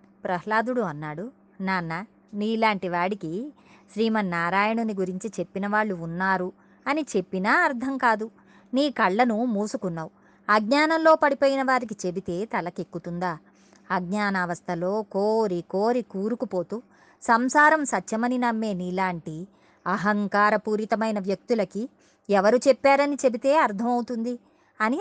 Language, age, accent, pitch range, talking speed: Telugu, 20-39, native, 190-270 Hz, 90 wpm